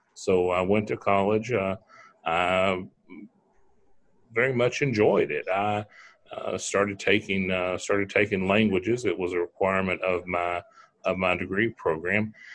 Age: 40-59